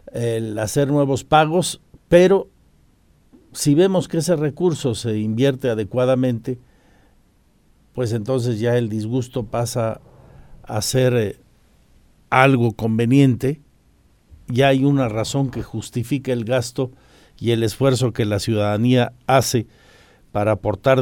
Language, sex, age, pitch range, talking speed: Spanish, male, 50-69, 100-130 Hz, 115 wpm